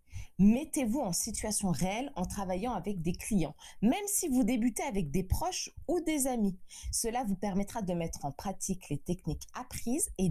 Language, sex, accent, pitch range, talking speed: French, female, French, 185-245 Hz, 175 wpm